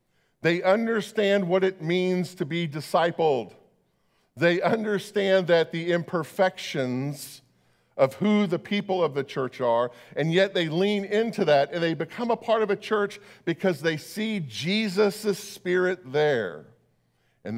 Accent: American